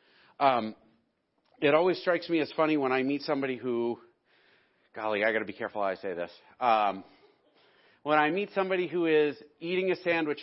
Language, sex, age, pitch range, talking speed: English, male, 40-59, 125-170 Hz, 185 wpm